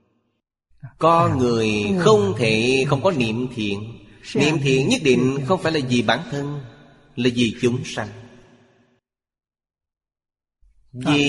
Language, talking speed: Vietnamese, 120 wpm